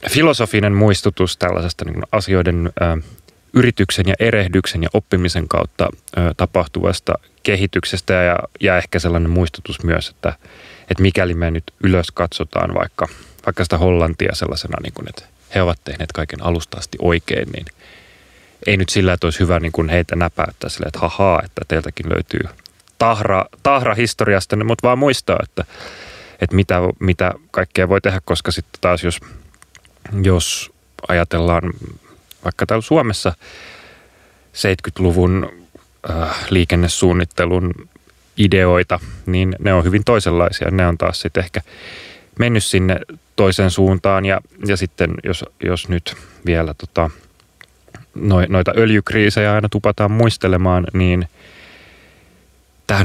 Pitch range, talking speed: 85-100 Hz, 125 wpm